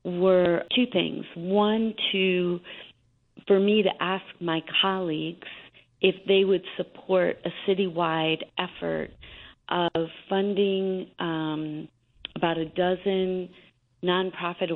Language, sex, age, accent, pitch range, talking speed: English, female, 40-59, American, 160-190 Hz, 100 wpm